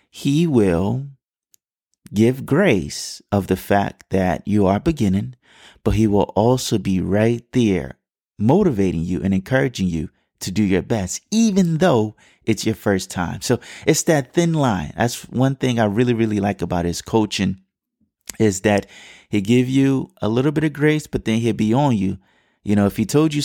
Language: English